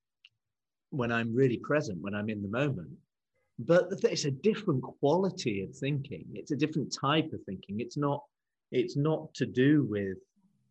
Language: English